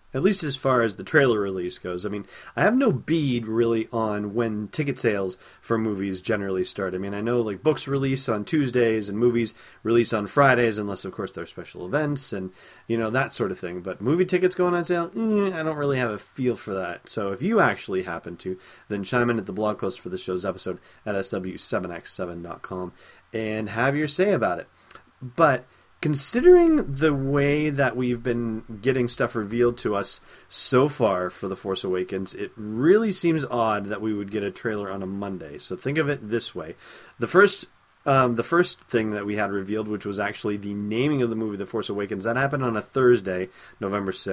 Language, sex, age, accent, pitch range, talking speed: English, male, 30-49, American, 100-135 Hz, 210 wpm